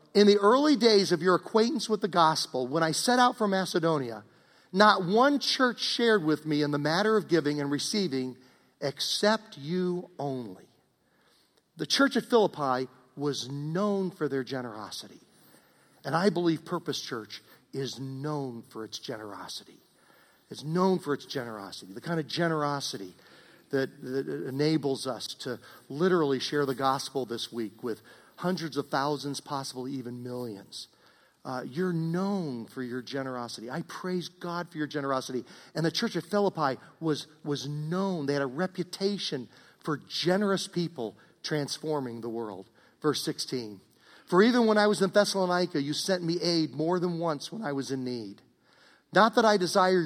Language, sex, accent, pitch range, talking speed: English, male, American, 135-195 Hz, 160 wpm